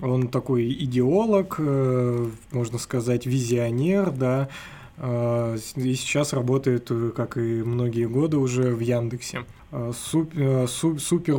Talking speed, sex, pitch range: 100 wpm, male, 125-140 Hz